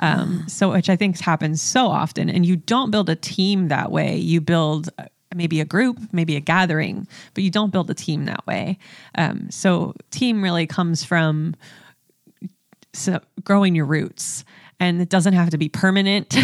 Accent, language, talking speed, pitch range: American, English, 175 wpm, 165-195 Hz